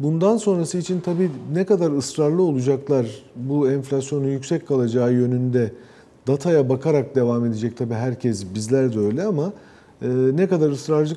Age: 40-59